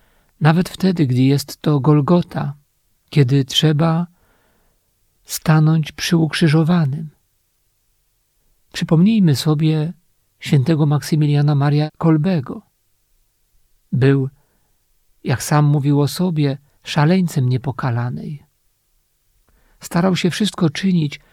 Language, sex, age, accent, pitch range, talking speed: Polish, male, 50-69, native, 135-165 Hz, 80 wpm